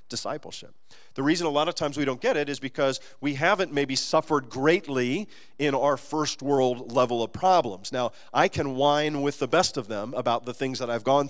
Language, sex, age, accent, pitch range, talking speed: English, male, 40-59, American, 130-200 Hz, 210 wpm